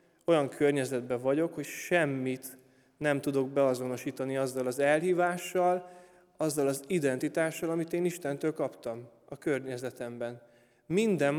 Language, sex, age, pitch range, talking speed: Hungarian, male, 20-39, 130-160 Hz, 110 wpm